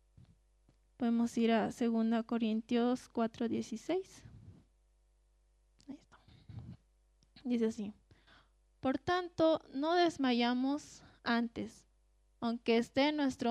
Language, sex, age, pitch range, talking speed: Spanish, female, 20-39, 225-255 Hz, 85 wpm